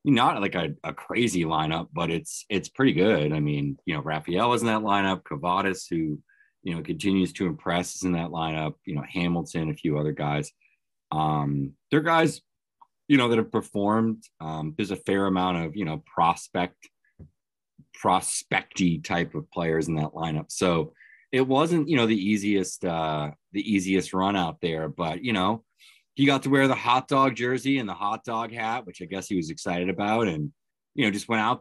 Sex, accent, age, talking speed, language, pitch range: male, American, 30-49, 200 wpm, English, 80-100 Hz